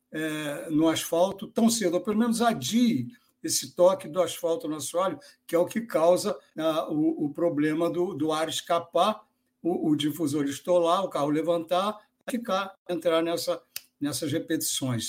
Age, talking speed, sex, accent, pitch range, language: 60-79, 145 wpm, male, Brazilian, 155-225 Hz, Portuguese